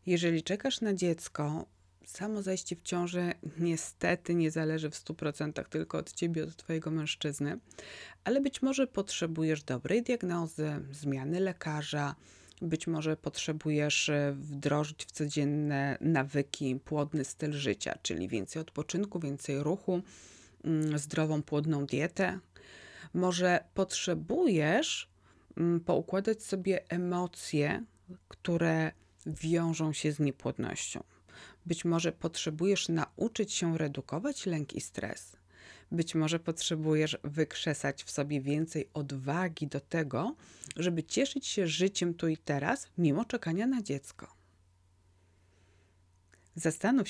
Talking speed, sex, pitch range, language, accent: 110 wpm, female, 145-175 Hz, Polish, native